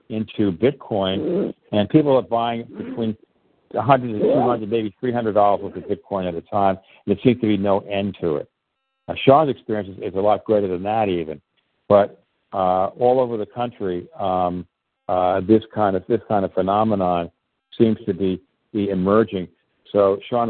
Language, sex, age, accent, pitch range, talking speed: English, male, 60-79, American, 95-115 Hz, 175 wpm